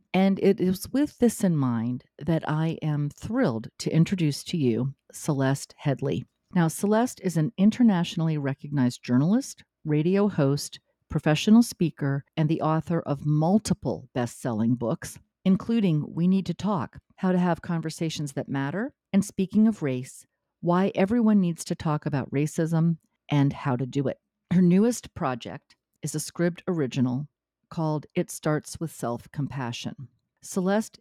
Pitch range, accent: 140-190 Hz, American